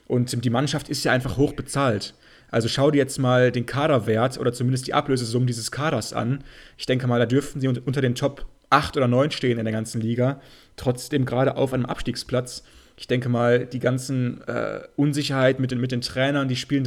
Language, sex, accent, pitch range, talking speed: German, male, German, 125-140 Hz, 205 wpm